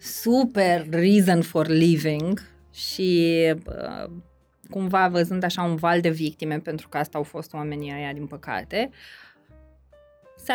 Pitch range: 170-225 Hz